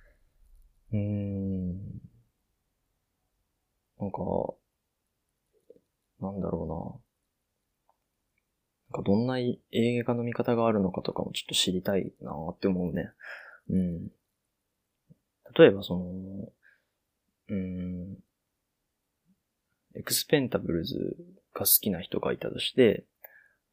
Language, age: Japanese, 20-39